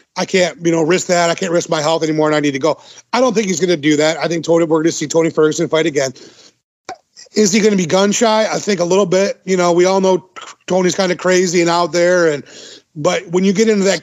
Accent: American